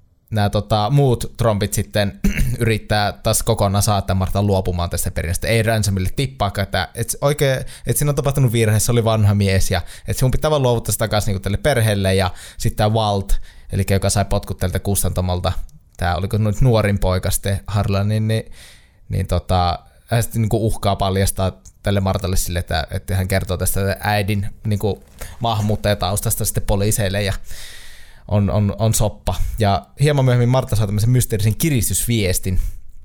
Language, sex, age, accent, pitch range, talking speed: Finnish, male, 20-39, native, 95-110 Hz, 160 wpm